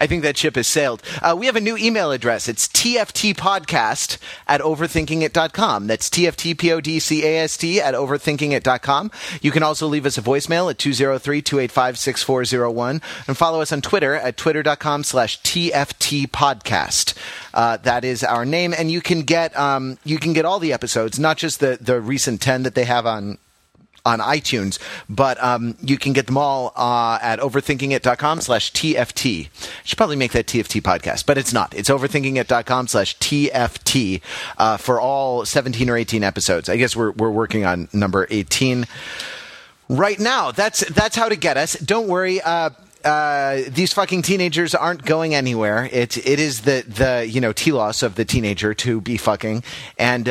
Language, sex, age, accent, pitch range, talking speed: English, male, 30-49, American, 120-155 Hz, 190 wpm